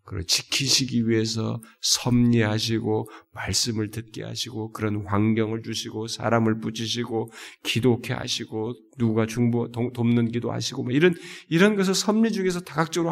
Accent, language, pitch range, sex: native, Korean, 110-185 Hz, male